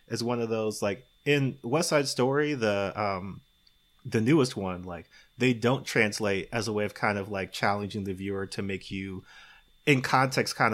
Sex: male